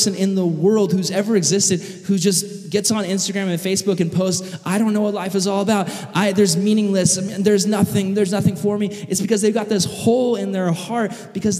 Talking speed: 230 wpm